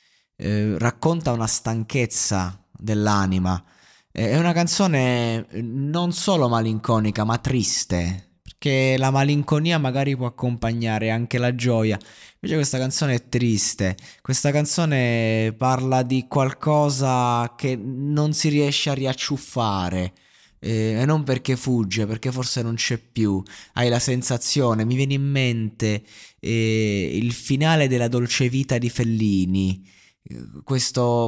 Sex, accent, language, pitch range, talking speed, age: male, native, Italian, 105-135 Hz, 125 wpm, 20-39